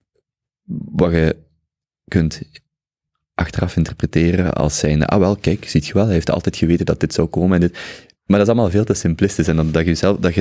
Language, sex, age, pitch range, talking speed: Dutch, male, 30-49, 75-95 Hz, 215 wpm